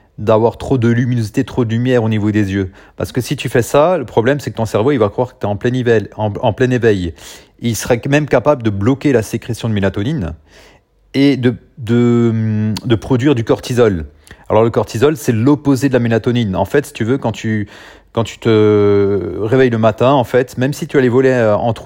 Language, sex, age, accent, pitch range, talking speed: French, male, 40-59, French, 110-130 Hz, 220 wpm